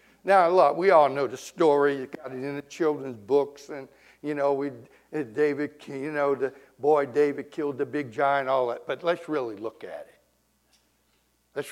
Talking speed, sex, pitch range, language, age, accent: 190 wpm, male, 145-240 Hz, English, 60-79, American